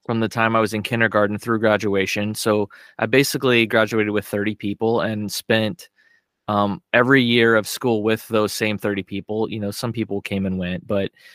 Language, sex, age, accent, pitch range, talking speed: English, male, 20-39, American, 100-115 Hz, 190 wpm